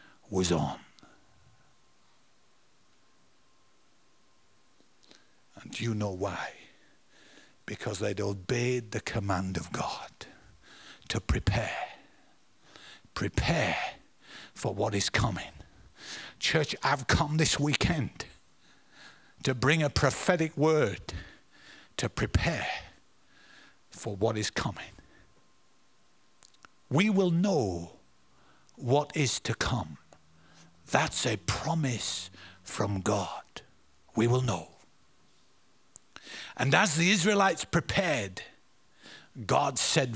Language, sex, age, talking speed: English, male, 60-79, 85 wpm